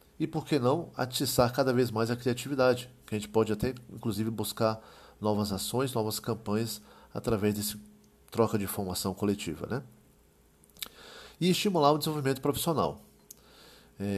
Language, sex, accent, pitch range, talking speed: Portuguese, male, Brazilian, 105-135 Hz, 145 wpm